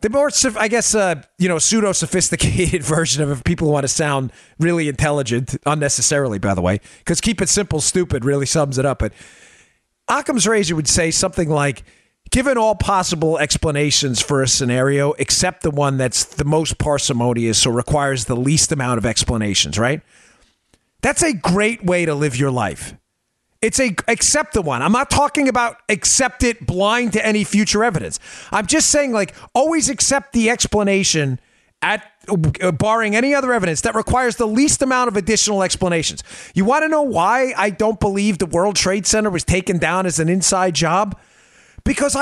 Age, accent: 40-59, American